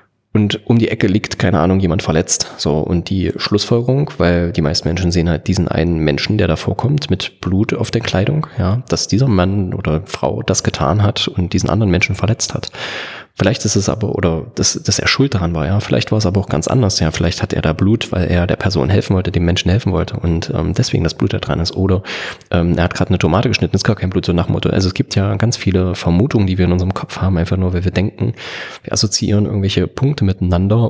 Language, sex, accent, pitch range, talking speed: German, male, German, 90-110 Hz, 245 wpm